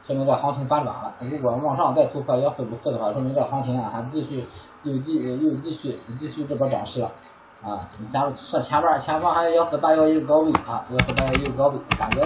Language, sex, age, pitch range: Chinese, male, 20-39, 120-150 Hz